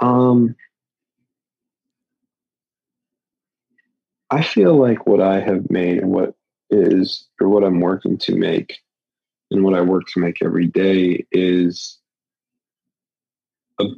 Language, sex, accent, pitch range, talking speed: English, male, American, 90-110 Hz, 115 wpm